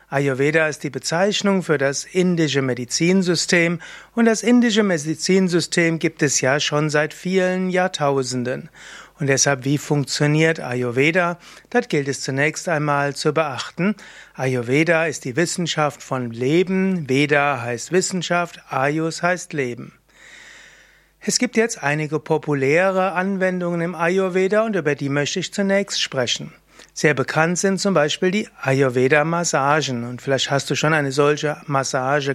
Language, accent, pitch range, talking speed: German, German, 140-175 Hz, 135 wpm